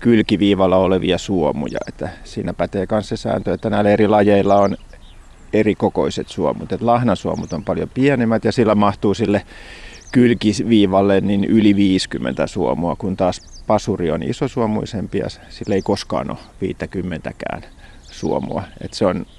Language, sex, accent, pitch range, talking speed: Finnish, male, native, 90-110 Hz, 140 wpm